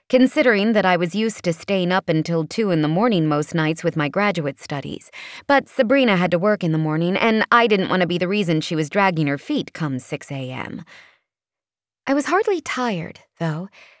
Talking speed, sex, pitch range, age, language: 200 wpm, female, 160-215 Hz, 20-39, English